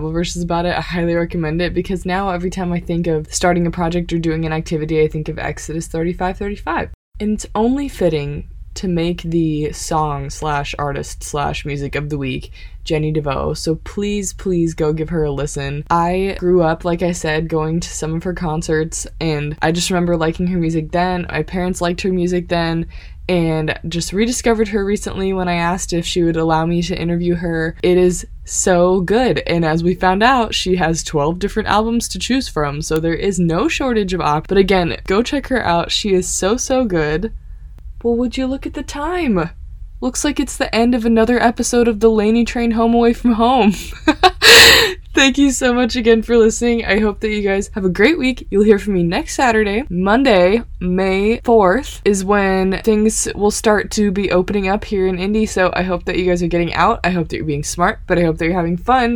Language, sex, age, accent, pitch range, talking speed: English, female, 20-39, American, 165-225 Hz, 215 wpm